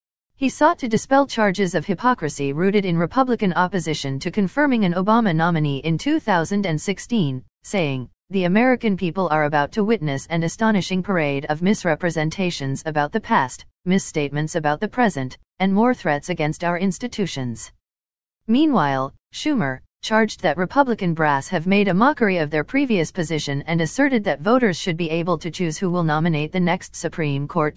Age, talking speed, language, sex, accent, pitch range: 40-59, 160 wpm, English, female, American, 150-210 Hz